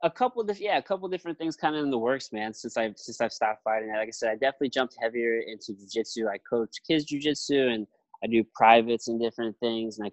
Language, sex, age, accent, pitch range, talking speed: English, male, 20-39, American, 105-125 Hz, 230 wpm